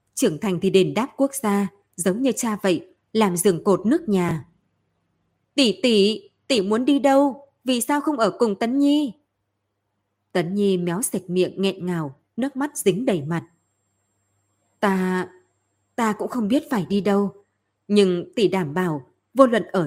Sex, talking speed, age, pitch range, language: female, 170 wpm, 20-39, 170-225 Hz, Vietnamese